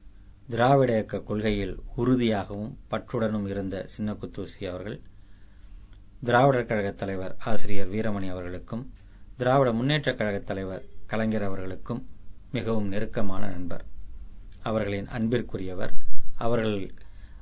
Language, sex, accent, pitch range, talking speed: Tamil, male, native, 95-110 Hz, 90 wpm